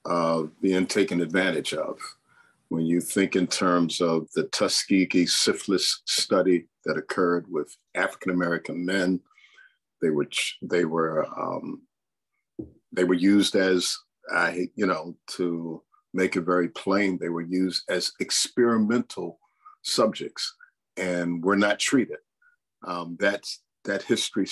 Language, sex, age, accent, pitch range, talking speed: English, male, 50-69, American, 85-105 Hz, 125 wpm